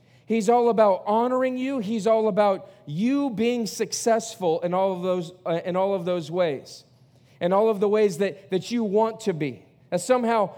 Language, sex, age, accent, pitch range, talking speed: English, male, 40-59, American, 180-240 Hz, 195 wpm